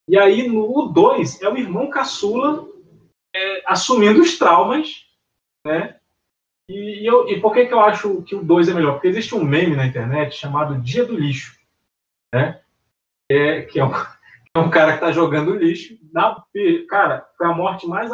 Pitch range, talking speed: 155-225 Hz, 185 wpm